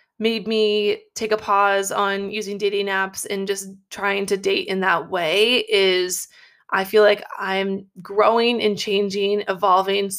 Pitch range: 190-220 Hz